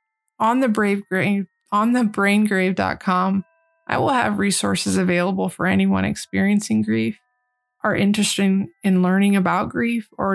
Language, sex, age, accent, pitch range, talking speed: English, female, 20-39, American, 185-220 Hz, 130 wpm